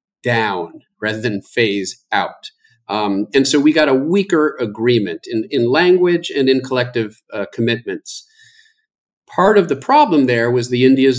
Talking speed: 155 wpm